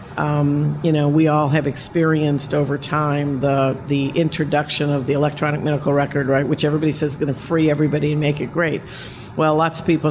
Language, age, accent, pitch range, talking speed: English, 50-69, American, 140-155 Hz, 200 wpm